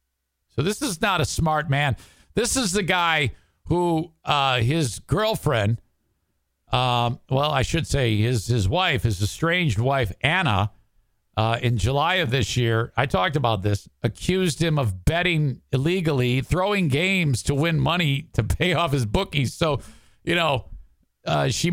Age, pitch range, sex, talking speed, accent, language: 50-69, 110-150 Hz, male, 155 wpm, American, English